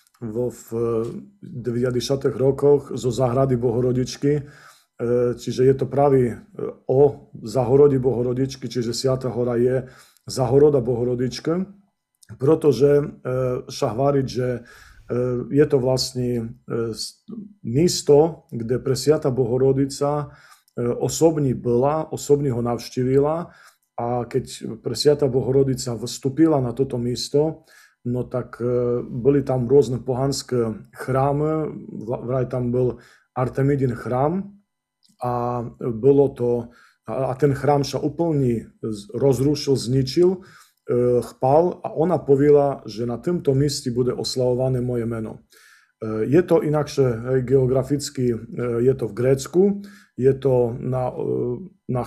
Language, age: Slovak, 40-59